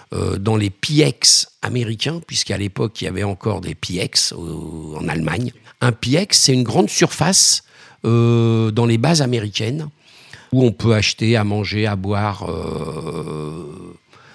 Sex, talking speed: male, 150 wpm